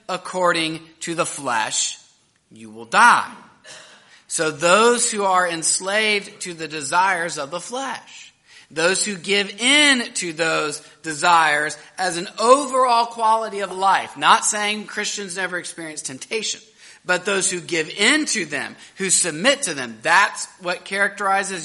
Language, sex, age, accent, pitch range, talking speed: English, male, 30-49, American, 155-200 Hz, 140 wpm